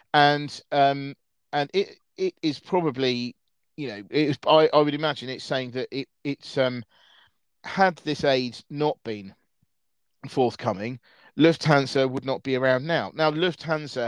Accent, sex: British, male